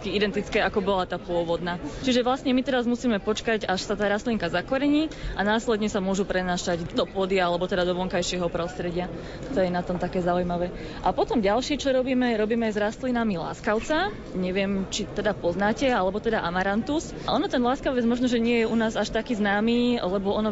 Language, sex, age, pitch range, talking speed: Slovak, female, 20-39, 195-235 Hz, 190 wpm